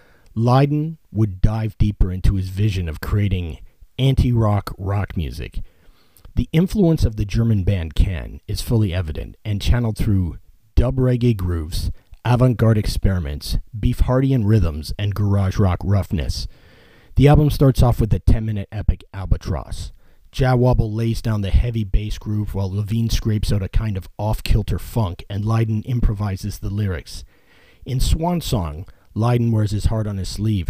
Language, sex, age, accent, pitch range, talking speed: English, male, 40-59, American, 95-115 Hz, 150 wpm